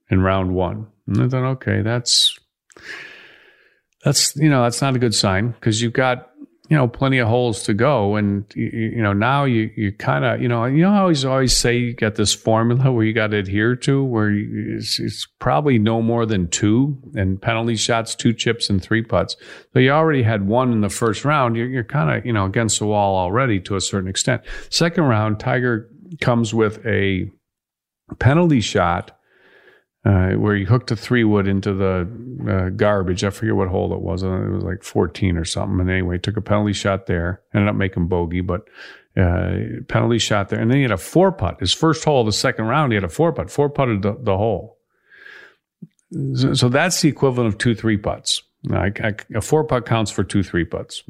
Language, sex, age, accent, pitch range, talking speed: English, male, 50-69, American, 100-125 Hz, 215 wpm